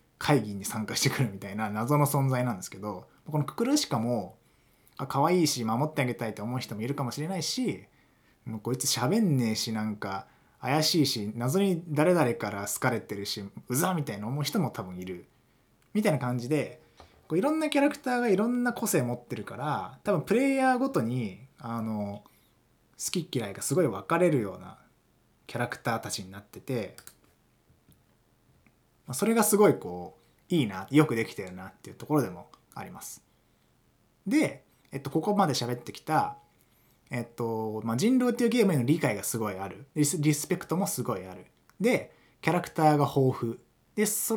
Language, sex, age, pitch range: Japanese, male, 20-39, 115-175 Hz